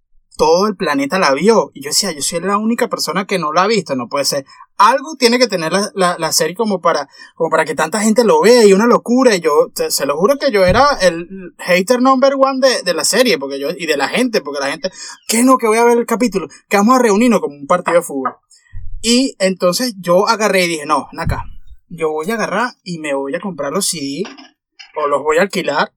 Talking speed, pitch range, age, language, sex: 240 wpm, 165-235 Hz, 20-39, English, male